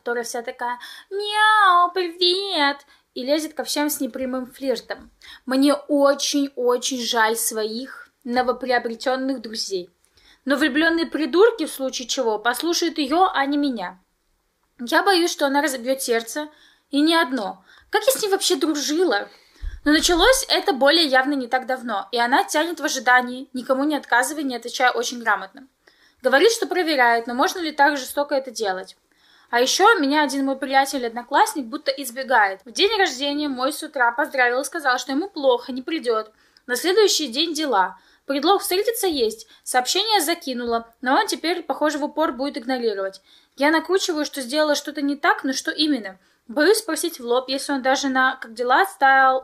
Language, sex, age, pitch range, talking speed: Russian, female, 10-29, 255-320 Hz, 165 wpm